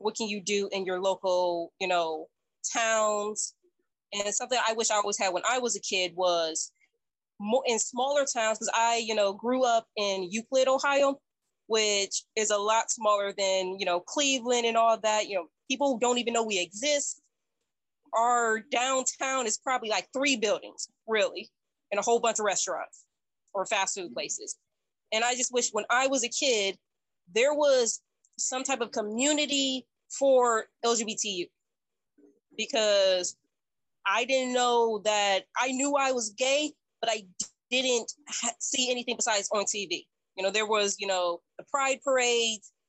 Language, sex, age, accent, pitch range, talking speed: English, female, 20-39, American, 205-260 Hz, 165 wpm